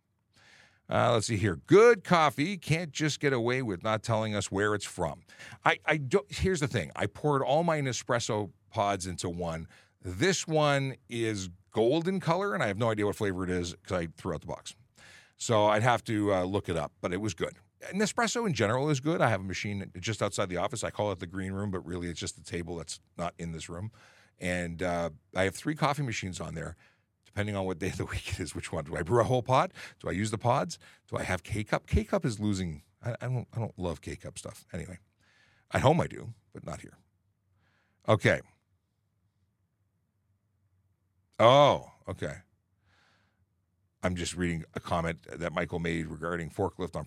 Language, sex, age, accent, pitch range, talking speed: English, male, 50-69, American, 95-125 Hz, 210 wpm